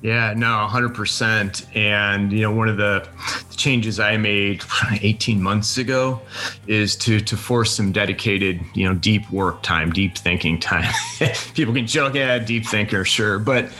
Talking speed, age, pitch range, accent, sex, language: 165 wpm, 30-49, 95-115 Hz, American, male, English